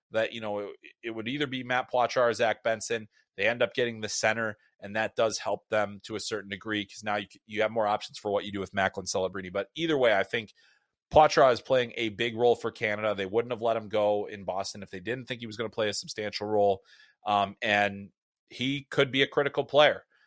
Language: English